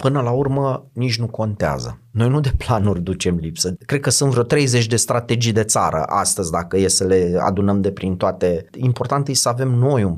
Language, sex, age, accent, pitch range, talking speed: Romanian, male, 30-49, native, 90-130 Hz, 210 wpm